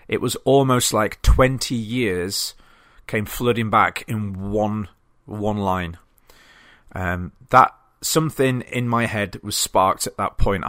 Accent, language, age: British, English, 30-49